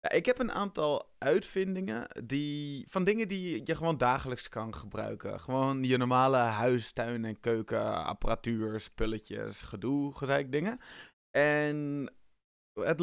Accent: Dutch